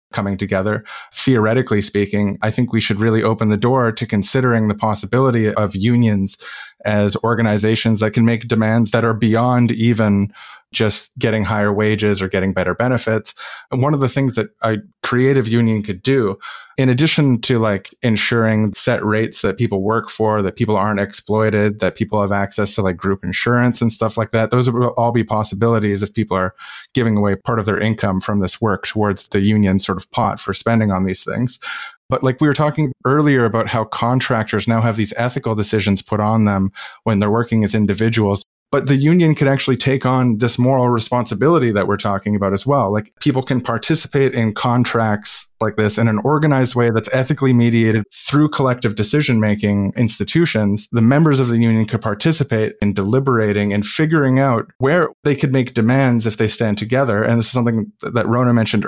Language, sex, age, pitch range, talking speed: English, male, 20-39, 105-125 Hz, 190 wpm